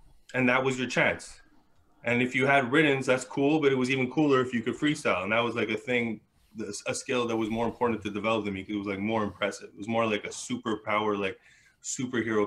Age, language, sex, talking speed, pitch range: 20-39, English, male, 240 wpm, 100-120 Hz